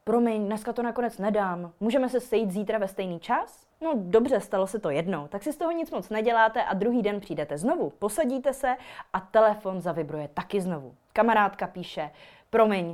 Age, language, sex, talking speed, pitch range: 20-39, Czech, female, 185 wpm, 195-270 Hz